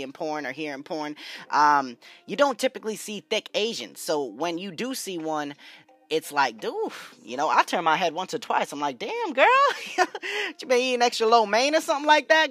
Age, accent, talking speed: 10-29, American, 215 wpm